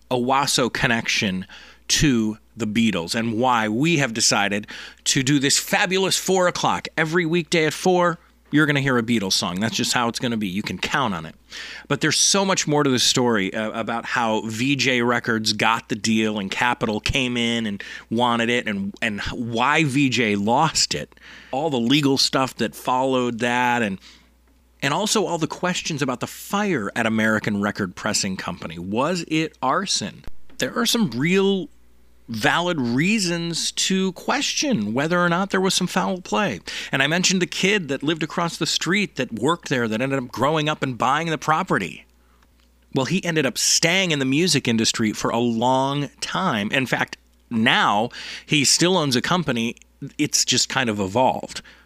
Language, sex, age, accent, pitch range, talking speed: English, male, 30-49, American, 115-165 Hz, 180 wpm